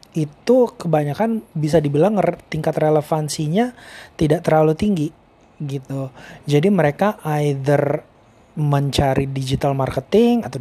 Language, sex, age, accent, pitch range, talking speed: Indonesian, male, 30-49, native, 145-165 Hz, 95 wpm